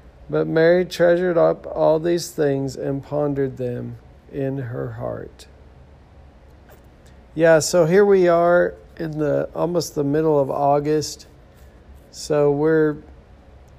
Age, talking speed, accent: 40-59, 120 wpm, American